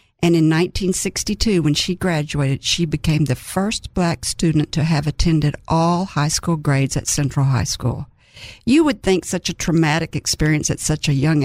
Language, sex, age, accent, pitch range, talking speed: English, female, 50-69, American, 155-180 Hz, 180 wpm